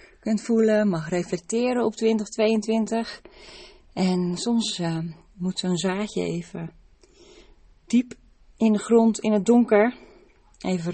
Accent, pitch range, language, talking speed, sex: Dutch, 165-215 Hz, Dutch, 115 wpm, female